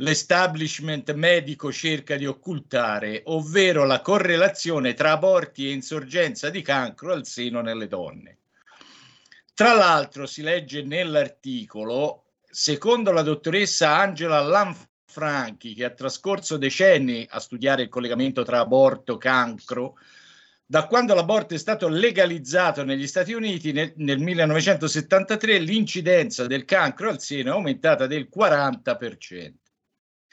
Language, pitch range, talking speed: Italian, 135-185 Hz, 120 wpm